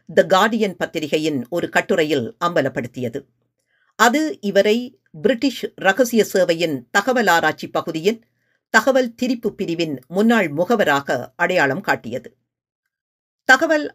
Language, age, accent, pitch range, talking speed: Tamil, 50-69, native, 165-235 Hz, 95 wpm